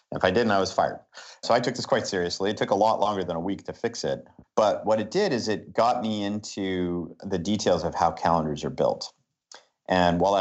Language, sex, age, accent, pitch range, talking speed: English, male, 50-69, American, 85-105 Hz, 235 wpm